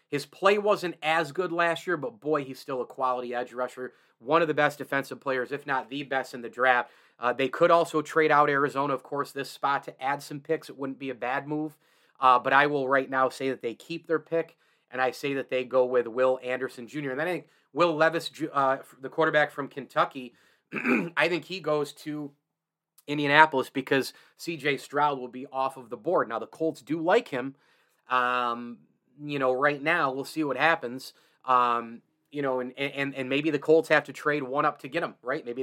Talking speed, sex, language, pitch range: 220 wpm, male, English, 130-150 Hz